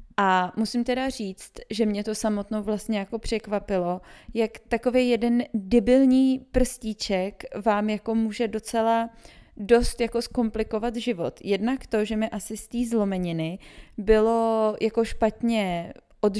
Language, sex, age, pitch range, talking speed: Czech, female, 20-39, 195-225 Hz, 130 wpm